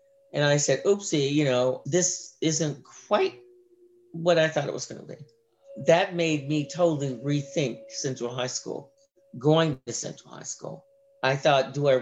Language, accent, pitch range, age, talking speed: English, American, 130-170 Hz, 50-69, 170 wpm